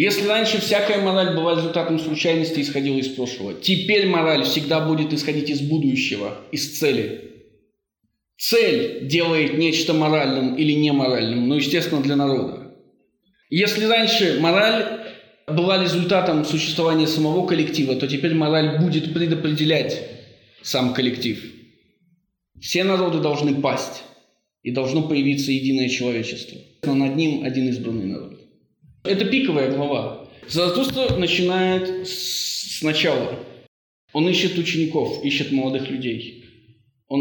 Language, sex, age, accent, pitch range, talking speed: Russian, male, 20-39, native, 130-170 Hz, 120 wpm